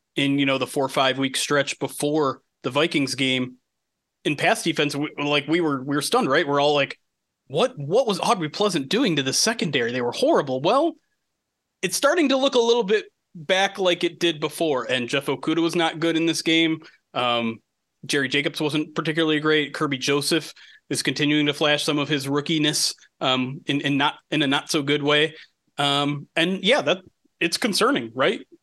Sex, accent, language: male, American, English